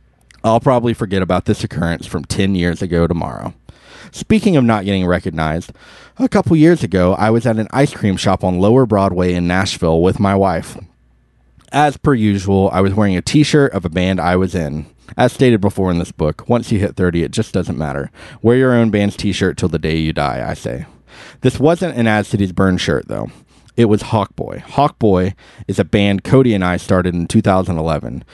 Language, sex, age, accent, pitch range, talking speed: English, male, 30-49, American, 90-120 Hz, 205 wpm